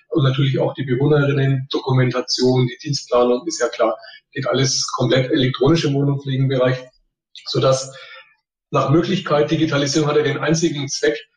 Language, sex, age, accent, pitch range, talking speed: German, male, 30-49, German, 130-160 Hz, 135 wpm